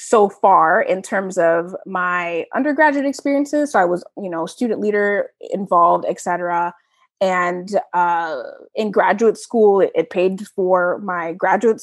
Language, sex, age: English, female, 20-39